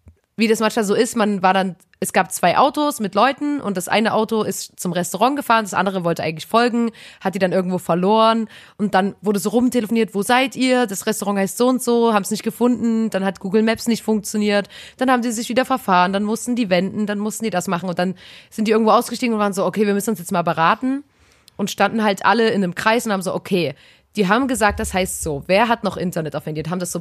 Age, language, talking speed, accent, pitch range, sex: 20-39, German, 250 wpm, German, 180-235 Hz, female